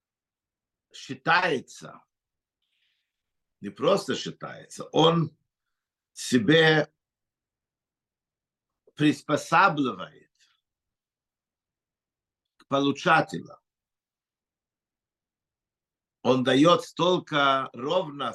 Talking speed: 45 wpm